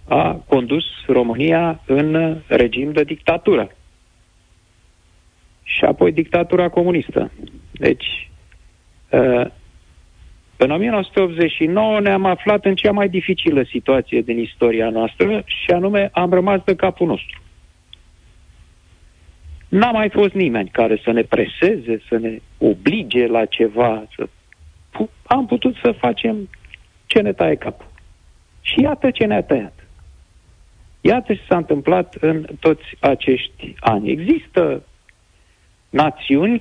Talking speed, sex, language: 105 wpm, male, Romanian